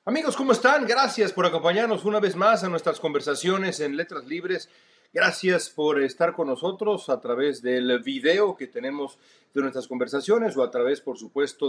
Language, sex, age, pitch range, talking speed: Spanish, male, 40-59, 135-220 Hz, 175 wpm